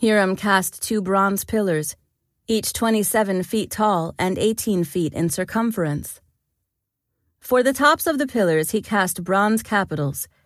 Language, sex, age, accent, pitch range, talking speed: English, female, 40-59, American, 160-205 Hz, 140 wpm